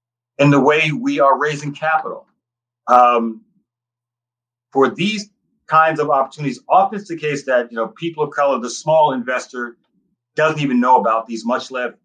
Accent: American